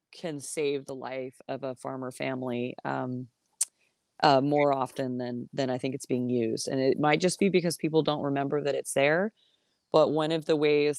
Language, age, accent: English, 20-39, American